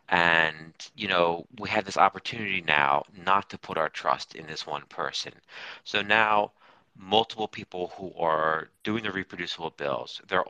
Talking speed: 160 wpm